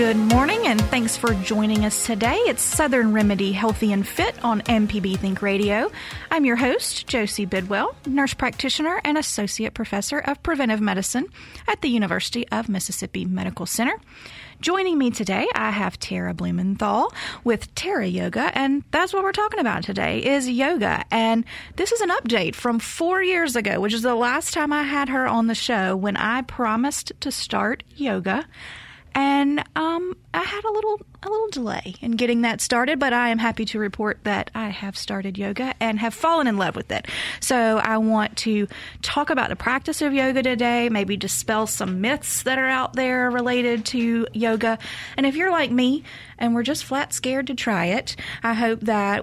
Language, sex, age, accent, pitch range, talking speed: English, female, 30-49, American, 205-275 Hz, 185 wpm